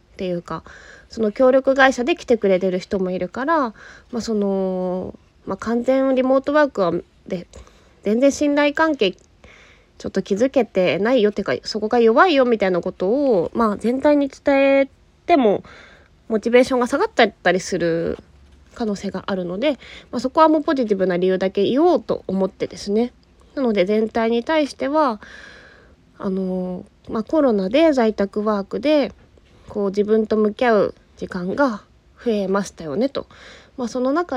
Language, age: Japanese, 20-39